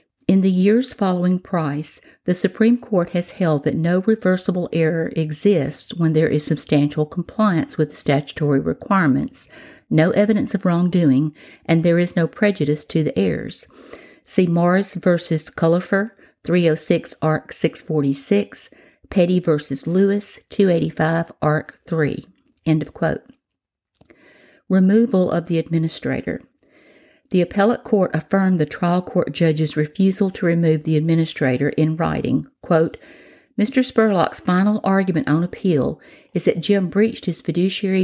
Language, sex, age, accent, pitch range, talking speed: English, female, 50-69, American, 155-195 Hz, 130 wpm